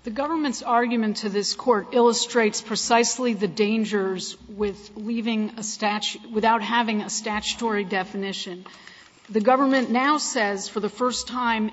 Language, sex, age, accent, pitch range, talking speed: English, female, 50-69, American, 210-245 Hz, 140 wpm